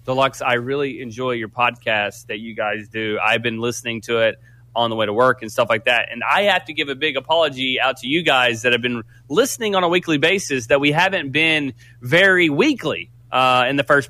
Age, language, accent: 30-49, English, American